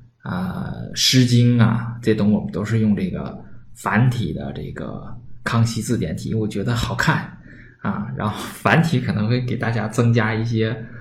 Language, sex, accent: Chinese, male, native